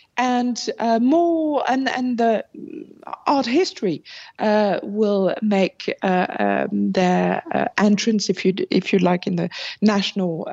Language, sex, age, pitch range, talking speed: English, female, 50-69, 195-255 Hz, 135 wpm